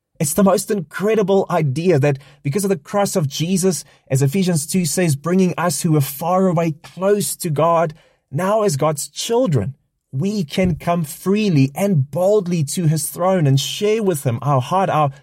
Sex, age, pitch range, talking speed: male, 20-39, 140-190 Hz, 175 wpm